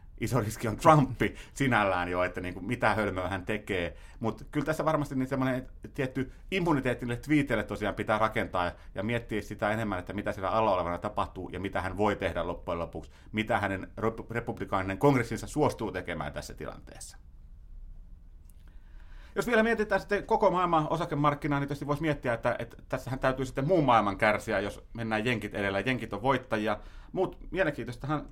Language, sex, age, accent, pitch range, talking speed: Finnish, male, 30-49, native, 105-140 Hz, 165 wpm